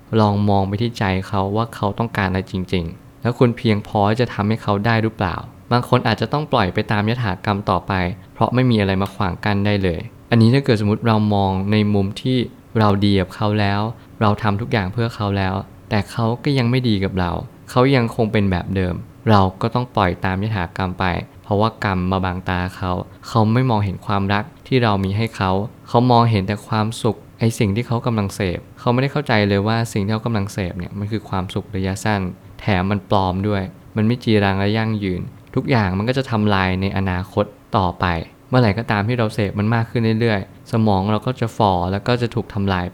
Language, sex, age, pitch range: Thai, male, 20-39, 95-115 Hz